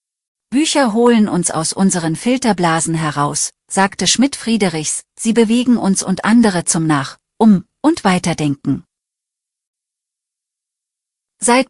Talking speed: 110 wpm